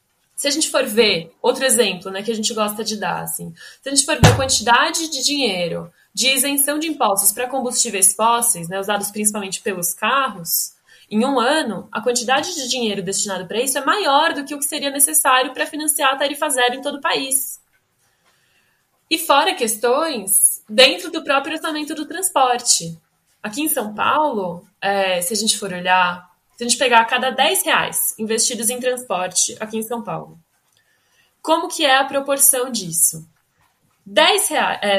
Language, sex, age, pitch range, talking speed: Portuguese, female, 10-29, 205-290 Hz, 175 wpm